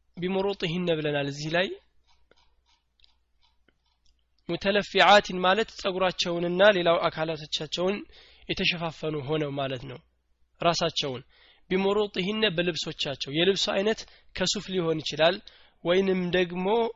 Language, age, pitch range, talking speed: Amharic, 20-39, 145-185 Hz, 80 wpm